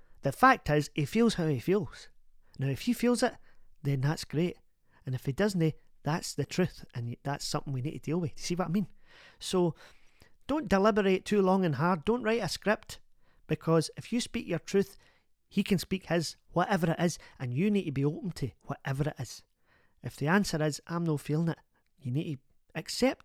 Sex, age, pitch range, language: male, 40-59, 140-185 Hz, English